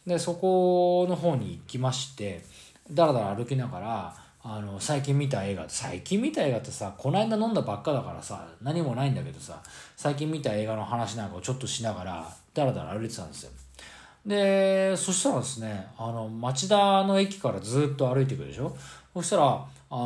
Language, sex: Japanese, male